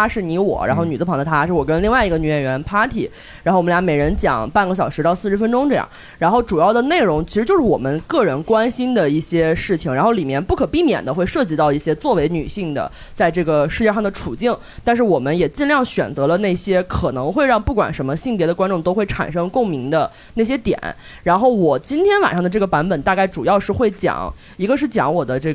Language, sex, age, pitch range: Chinese, female, 20-39, 160-220 Hz